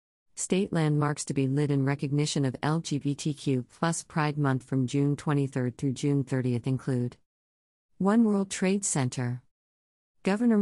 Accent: American